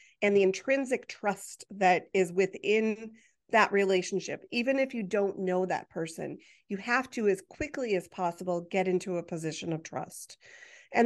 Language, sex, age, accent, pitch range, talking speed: English, female, 30-49, American, 180-225 Hz, 165 wpm